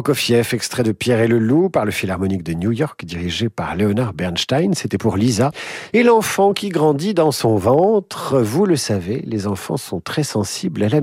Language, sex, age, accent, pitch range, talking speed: French, male, 50-69, French, 115-160 Hz, 200 wpm